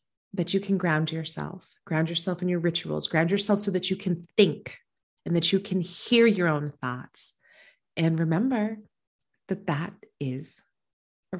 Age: 30-49